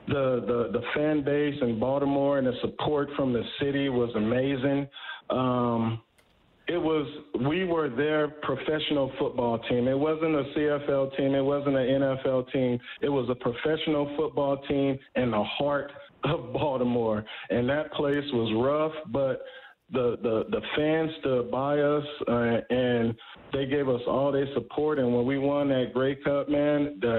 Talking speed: 165 wpm